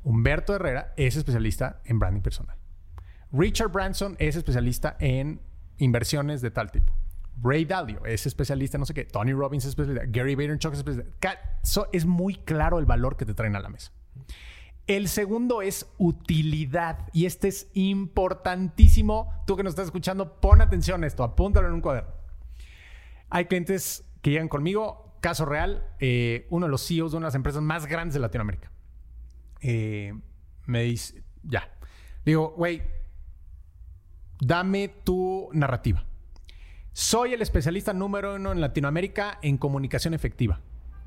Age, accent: 30-49, Mexican